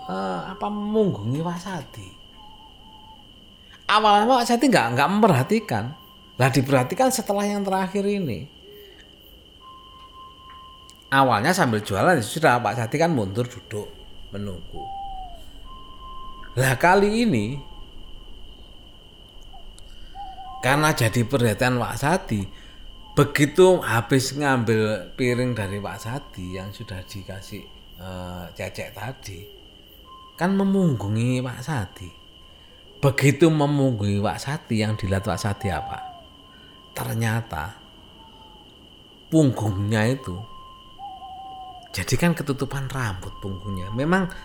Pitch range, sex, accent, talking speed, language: 100-170 Hz, male, native, 90 wpm, Indonesian